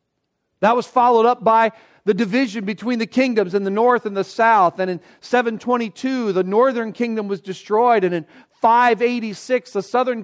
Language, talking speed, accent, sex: English, 170 wpm, American, male